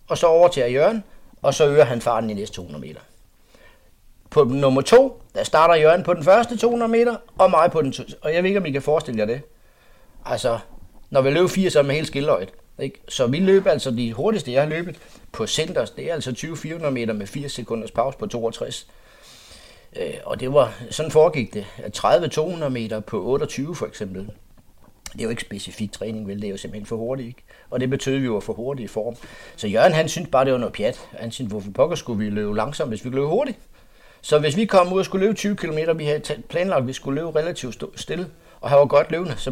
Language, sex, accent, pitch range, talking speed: Danish, male, native, 120-165 Hz, 230 wpm